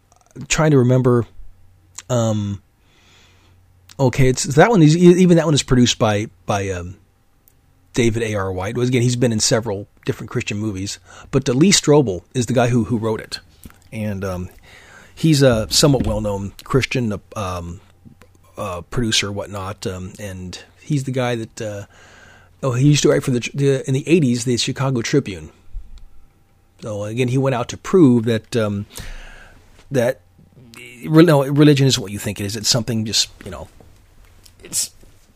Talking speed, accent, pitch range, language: 165 wpm, American, 100-145 Hz, English